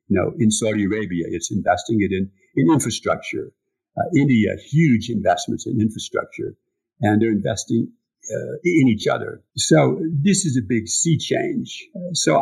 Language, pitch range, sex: English, 105-150 Hz, male